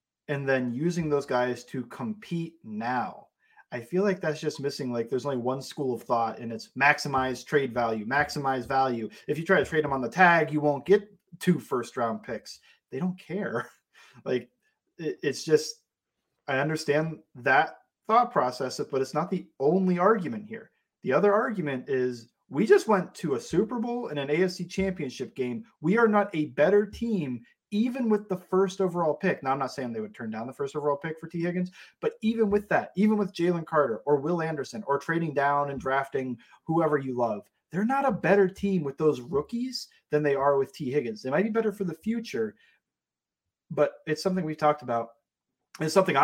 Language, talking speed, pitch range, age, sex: English, 200 wpm, 135-200 Hz, 30-49, male